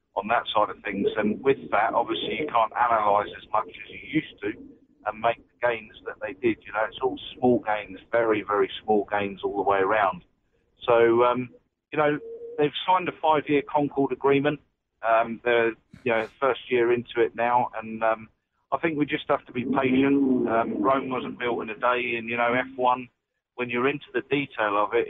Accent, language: British, English